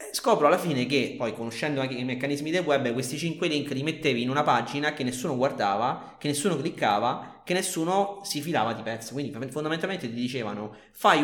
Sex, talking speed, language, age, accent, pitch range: male, 190 wpm, Italian, 30-49, native, 125-175 Hz